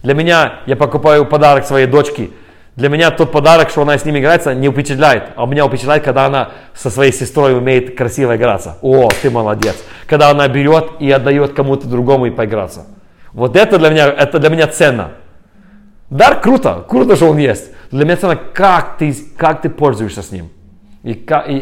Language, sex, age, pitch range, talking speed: Russian, male, 40-59, 115-150 Hz, 185 wpm